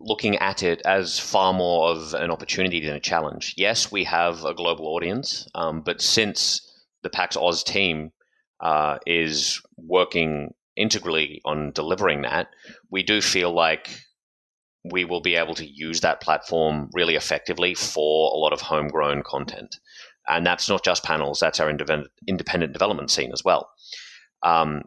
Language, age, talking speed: English, 30-49, 155 wpm